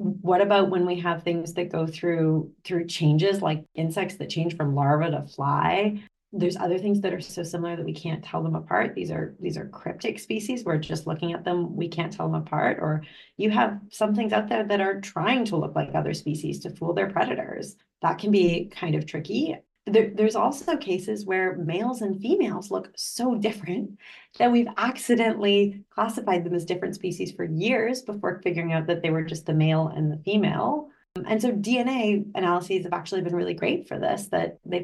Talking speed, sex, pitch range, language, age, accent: 205 wpm, female, 155-200 Hz, English, 30-49, American